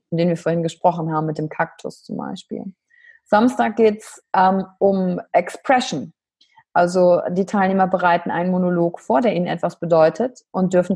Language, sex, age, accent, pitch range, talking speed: German, female, 30-49, German, 175-210 Hz, 155 wpm